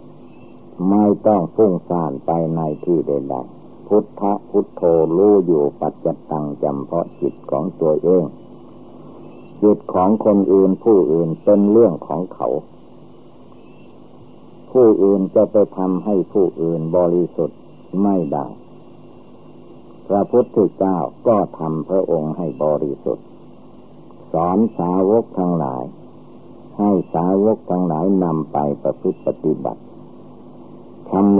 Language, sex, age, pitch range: Thai, male, 60-79, 80-100 Hz